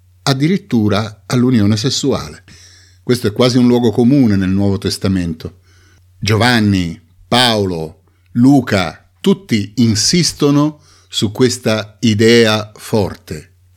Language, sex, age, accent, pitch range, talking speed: Italian, male, 50-69, native, 95-130 Hz, 90 wpm